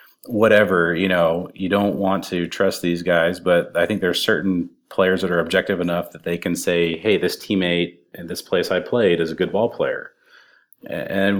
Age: 40-59